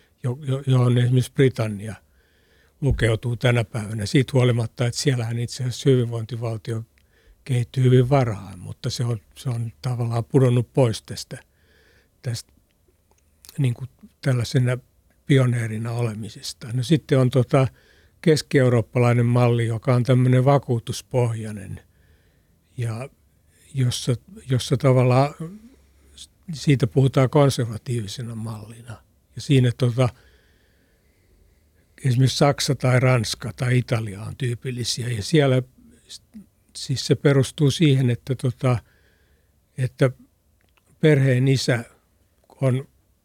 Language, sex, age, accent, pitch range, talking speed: Finnish, male, 60-79, native, 110-130 Hz, 95 wpm